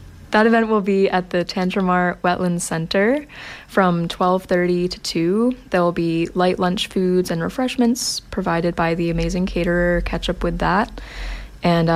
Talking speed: 155 wpm